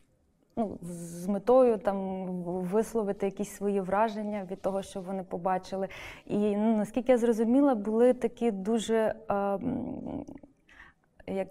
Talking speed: 120 wpm